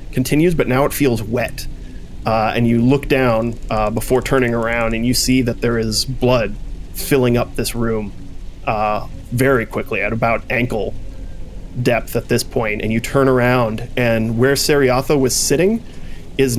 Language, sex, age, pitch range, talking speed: English, male, 30-49, 110-130 Hz, 165 wpm